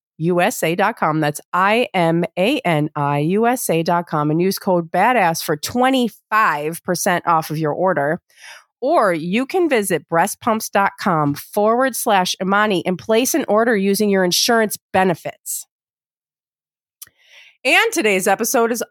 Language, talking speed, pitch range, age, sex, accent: English, 120 wpm, 165-230 Hz, 30-49, female, American